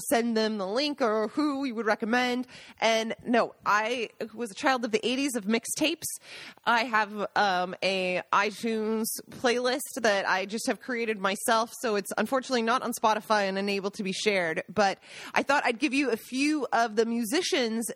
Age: 20-39